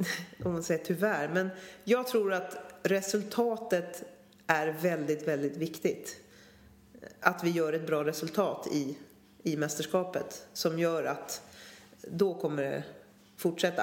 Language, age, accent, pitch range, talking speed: English, 40-59, Swedish, 155-200 Hz, 125 wpm